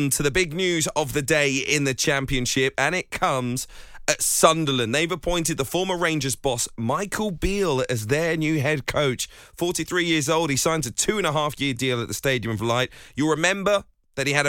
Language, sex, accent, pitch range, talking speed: English, male, British, 115-155 Hz, 205 wpm